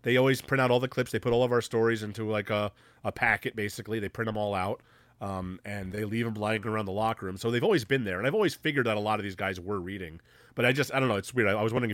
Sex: male